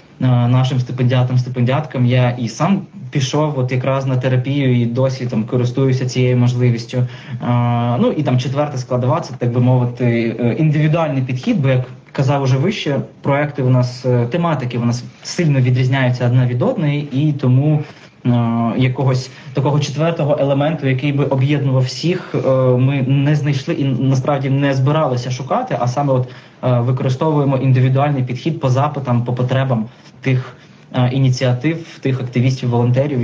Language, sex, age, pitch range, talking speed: Ukrainian, male, 20-39, 130-160 Hz, 135 wpm